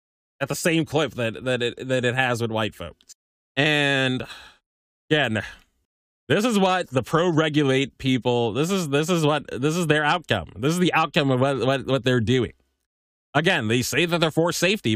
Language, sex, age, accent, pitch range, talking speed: English, male, 20-39, American, 120-160 Hz, 190 wpm